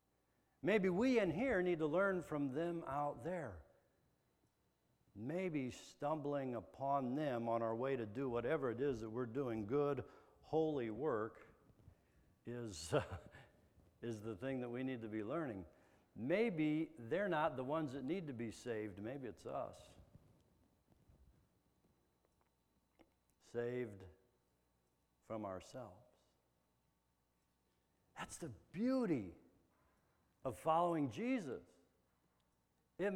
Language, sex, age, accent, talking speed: English, male, 60-79, American, 110 wpm